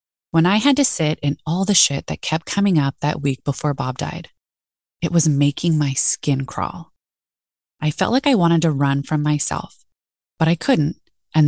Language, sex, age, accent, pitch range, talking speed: English, female, 20-39, American, 140-175 Hz, 195 wpm